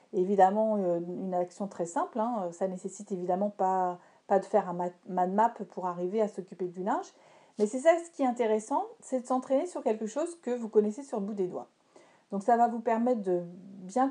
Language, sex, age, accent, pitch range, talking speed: French, female, 40-59, French, 190-250 Hz, 215 wpm